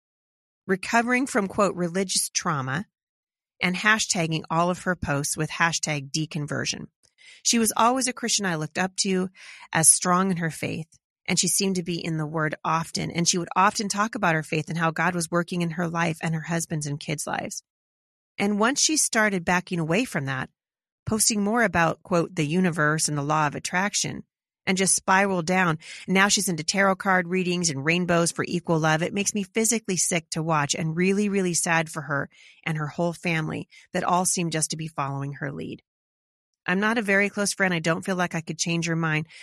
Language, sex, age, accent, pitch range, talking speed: English, female, 30-49, American, 160-195 Hz, 205 wpm